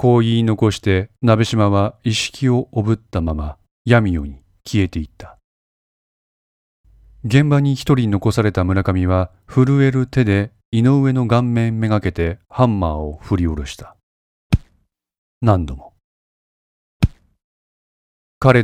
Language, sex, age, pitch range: Japanese, male, 40-59, 85-120 Hz